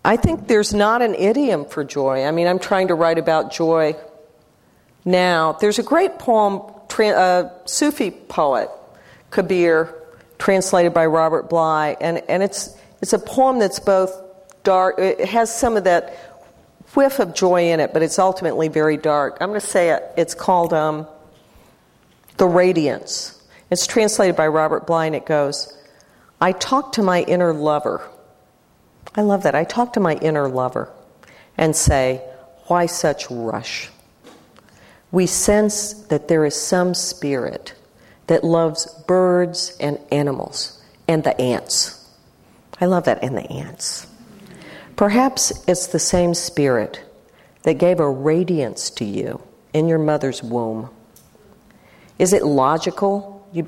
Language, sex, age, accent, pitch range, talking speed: English, female, 50-69, American, 155-190 Hz, 150 wpm